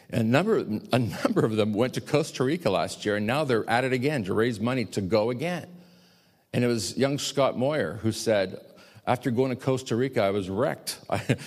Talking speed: 210 wpm